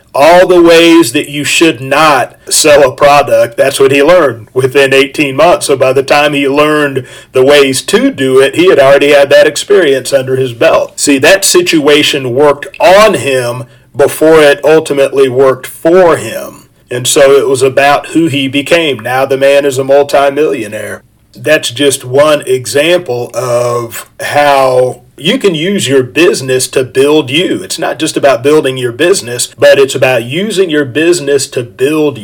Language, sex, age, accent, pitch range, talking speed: English, male, 40-59, American, 130-155 Hz, 170 wpm